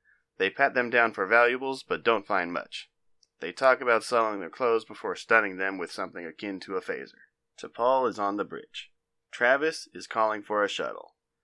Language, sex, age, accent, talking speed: English, male, 30-49, American, 190 wpm